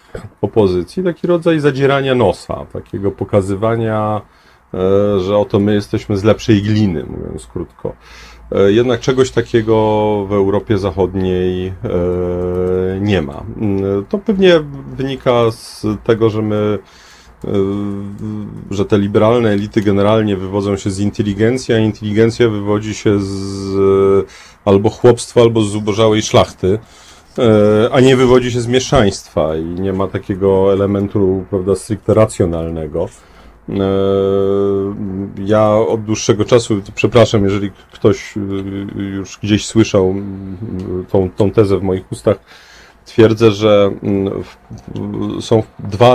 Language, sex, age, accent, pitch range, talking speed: Polish, male, 40-59, native, 95-115 Hz, 110 wpm